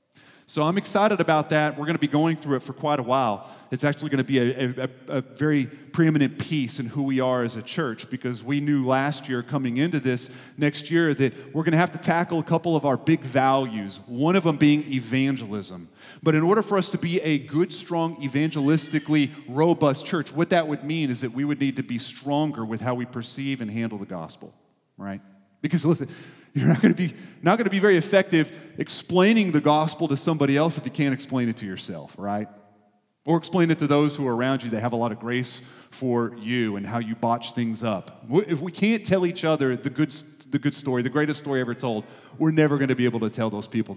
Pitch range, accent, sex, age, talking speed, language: 120-160 Hz, American, male, 30-49, 235 wpm, English